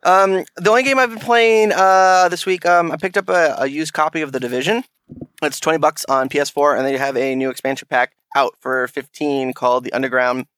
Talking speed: 220 wpm